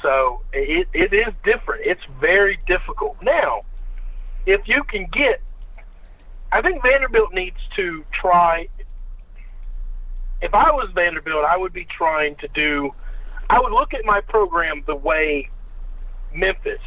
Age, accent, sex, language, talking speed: 50-69, American, male, English, 135 wpm